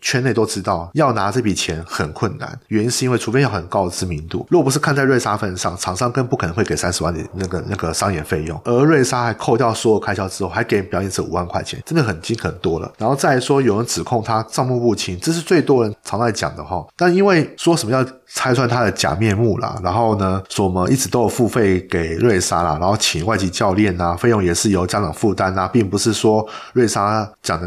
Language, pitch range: Chinese, 95-135 Hz